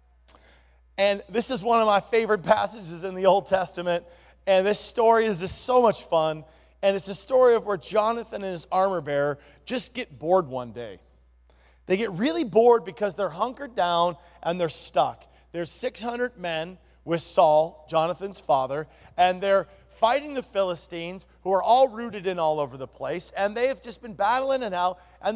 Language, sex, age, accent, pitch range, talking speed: English, male, 40-59, American, 160-220 Hz, 180 wpm